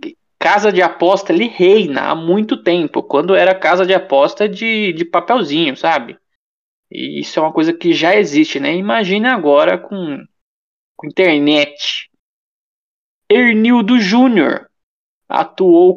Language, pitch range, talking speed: Portuguese, 155-205 Hz, 130 wpm